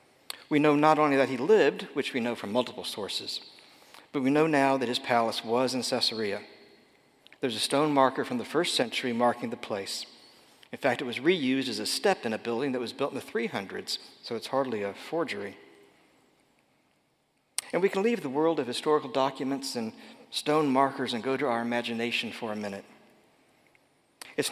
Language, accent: English, American